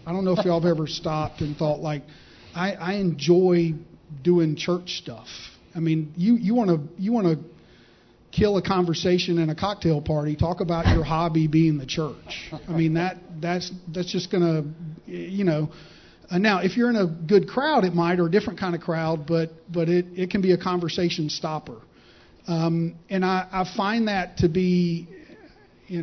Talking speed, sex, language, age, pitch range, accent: 190 wpm, male, English, 40-59, 155-180 Hz, American